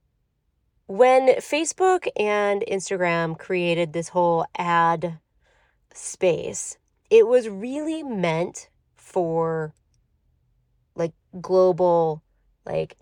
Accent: American